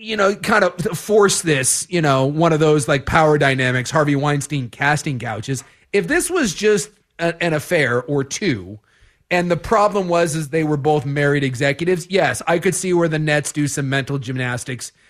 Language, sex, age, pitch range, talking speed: English, male, 30-49, 145-210 Hz, 185 wpm